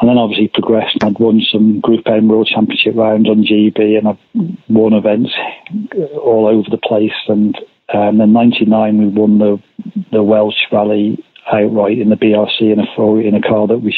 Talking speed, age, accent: 200 wpm, 40-59, British